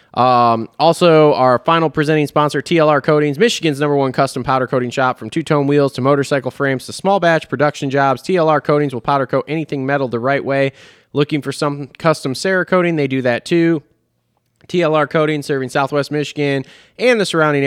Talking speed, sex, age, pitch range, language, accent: 180 wpm, male, 20-39, 130-160 Hz, English, American